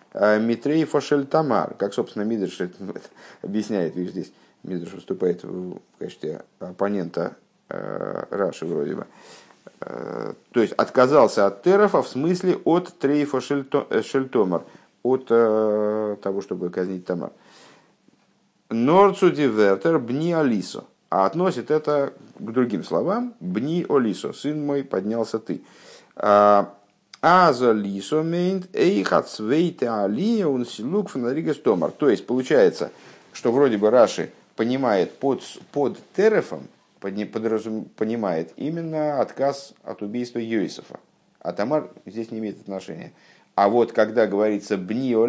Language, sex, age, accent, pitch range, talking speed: Russian, male, 50-69, native, 105-160 Hz, 110 wpm